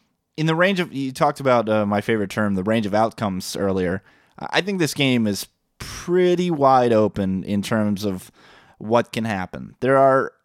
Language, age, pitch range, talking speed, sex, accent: English, 20-39, 105-135 Hz, 185 wpm, male, American